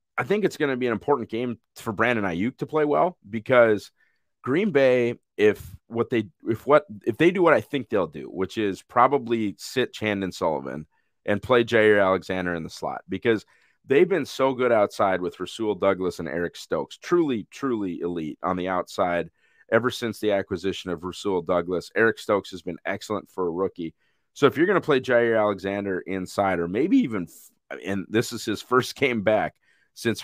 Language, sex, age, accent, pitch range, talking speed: English, male, 30-49, American, 95-125 Hz, 195 wpm